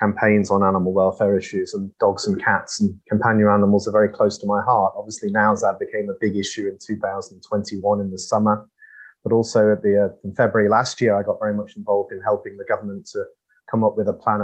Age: 30-49